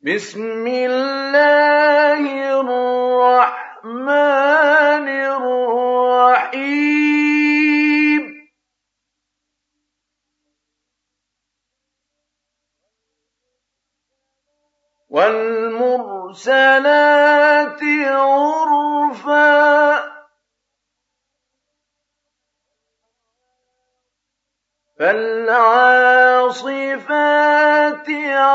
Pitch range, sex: 255-295 Hz, male